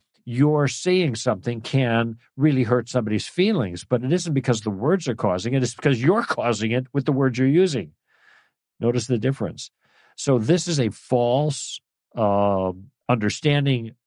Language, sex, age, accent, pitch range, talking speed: English, male, 50-69, American, 105-135 Hz, 160 wpm